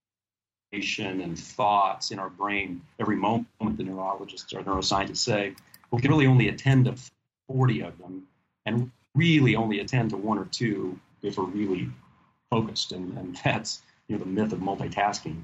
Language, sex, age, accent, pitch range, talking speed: English, male, 40-59, American, 95-115 Hz, 165 wpm